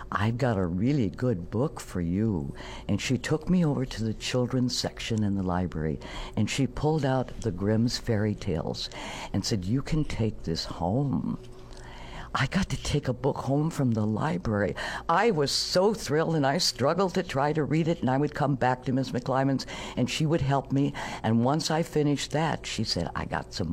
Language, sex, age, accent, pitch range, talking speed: English, female, 60-79, American, 110-145 Hz, 200 wpm